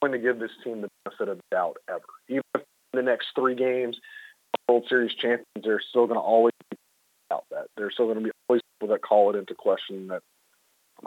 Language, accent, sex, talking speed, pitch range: English, American, male, 215 wpm, 110-135 Hz